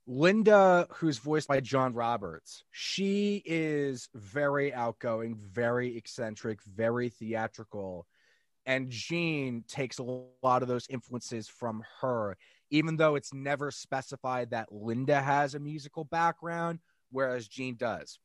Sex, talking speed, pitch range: male, 125 wpm, 115-150 Hz